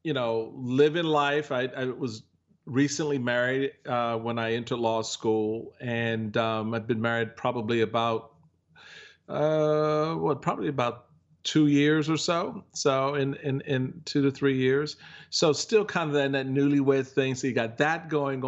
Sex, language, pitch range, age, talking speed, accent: male, English, 115-145 Hz, 40-59, 170 wpm, American